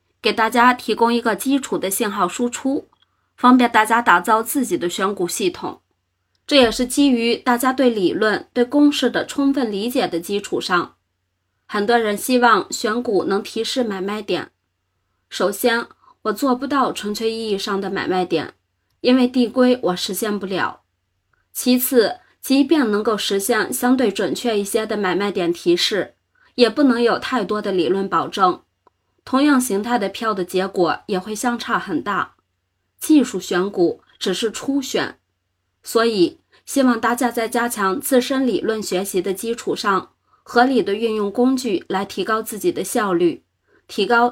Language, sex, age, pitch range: Chinese, female, 20-39, 195-250 Hz